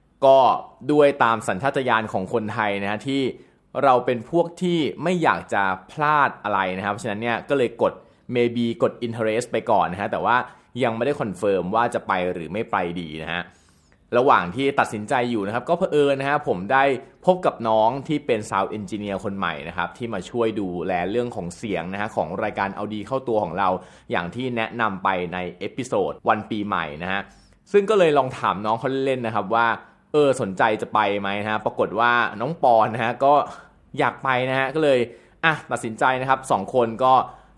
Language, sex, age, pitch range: Thai, male, 20-39, 100-135 Hz